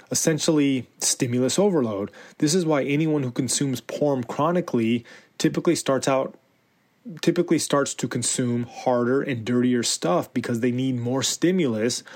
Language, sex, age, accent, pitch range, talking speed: English, male, 20-39, American, 120-140 Hz, 135 wpm